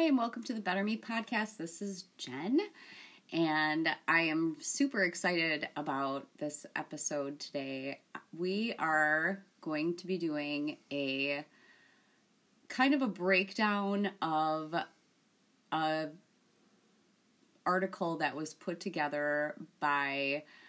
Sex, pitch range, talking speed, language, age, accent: female, 155-195 Hz, 115 wpm, English, 30-49, American